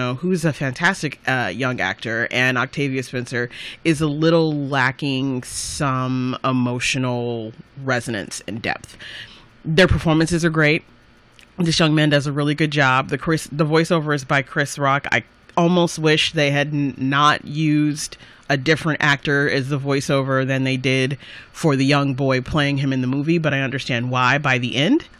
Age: 30-49